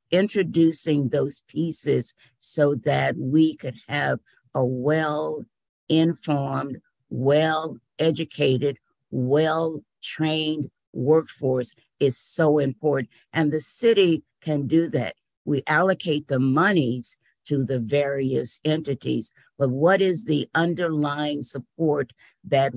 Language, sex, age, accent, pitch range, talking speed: English, female, 50-69, American, 135-160 Hz, 100 wpm